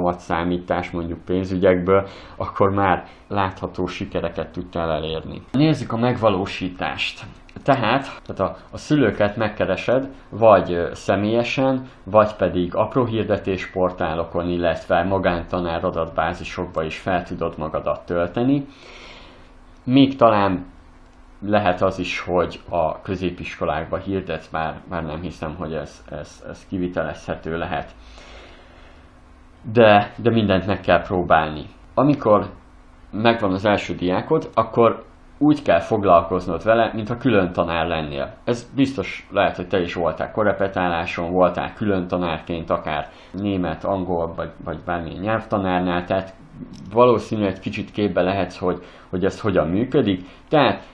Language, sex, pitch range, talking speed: Hungarian, male, 85-105 Hz, 120 wpm